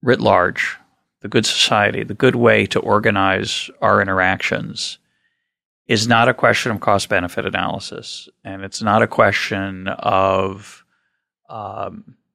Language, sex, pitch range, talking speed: English, male, 95-115 Hz, 125 wpm